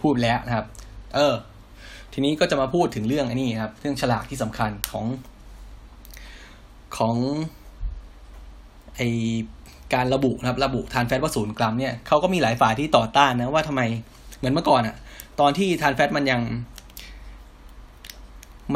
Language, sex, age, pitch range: Thai, male, 10-29, 115-140 Hz